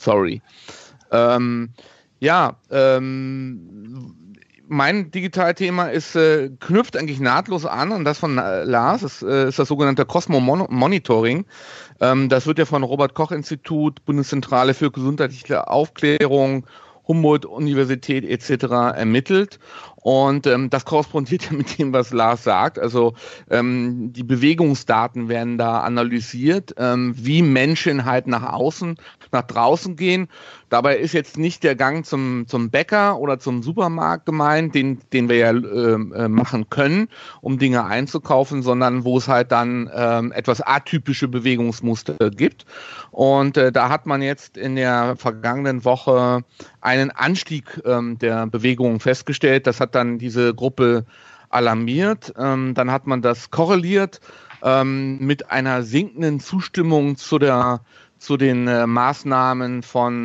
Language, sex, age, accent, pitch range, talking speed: English, male, 40-59, German, 125-150 Hz, 130 wpm